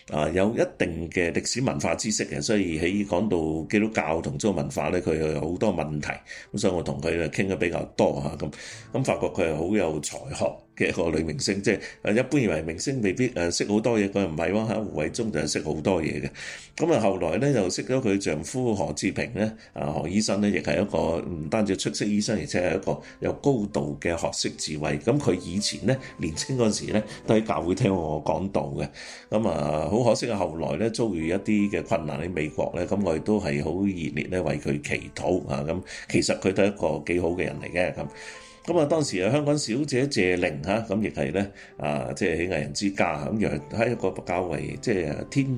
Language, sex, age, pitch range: Chinese, male, 30-49, 75-105 Hz